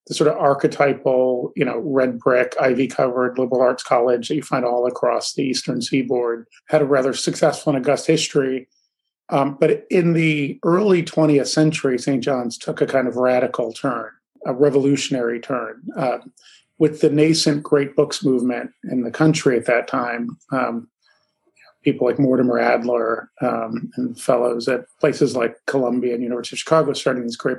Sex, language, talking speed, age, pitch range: male, English, 165 wpm, 40-59, 125-150 Hz